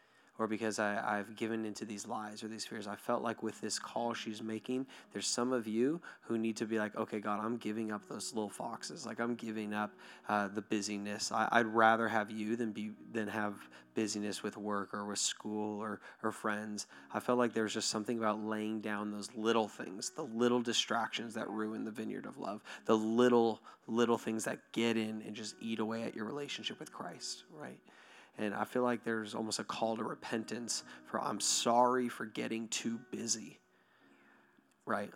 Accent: American